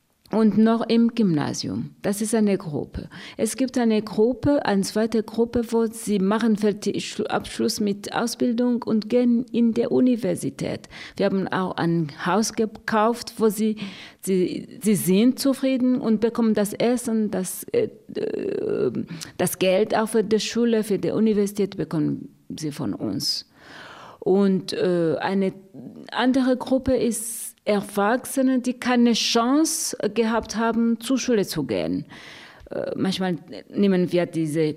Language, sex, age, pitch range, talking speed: German, female, 50-69, 190-235 Hz, 135 wpm